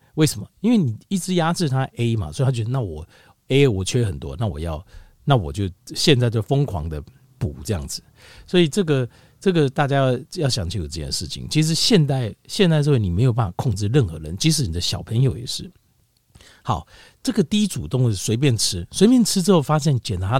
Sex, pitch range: male, 95-150 Hz